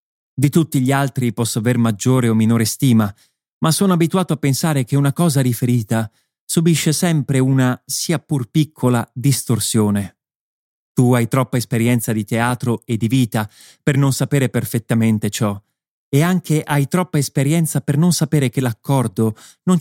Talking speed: 155 wpm